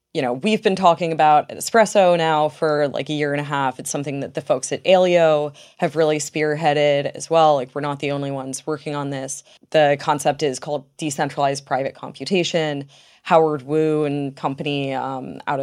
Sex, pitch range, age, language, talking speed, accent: female, 140-160 Hz, 20-39, English, 190 wpm, American